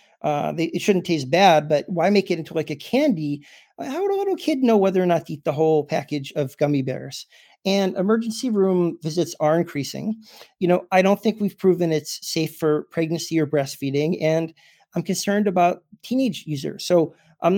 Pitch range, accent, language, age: 155-190 Hz, American, English, 40-59